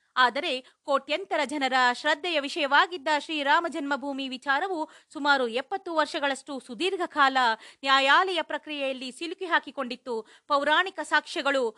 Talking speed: 95 wpm